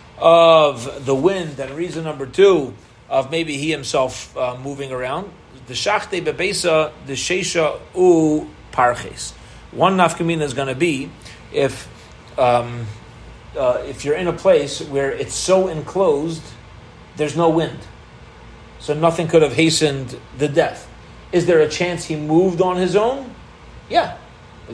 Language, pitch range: English, 145-180 Hz